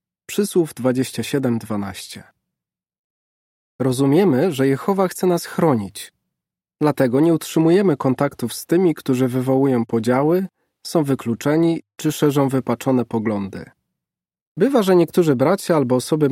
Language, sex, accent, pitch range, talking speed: Polish, male, native, 125-155 Hz, 105 wpm